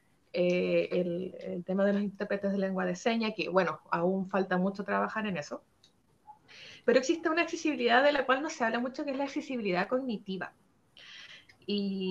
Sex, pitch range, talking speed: female, 210-290 Hz, 180 wpm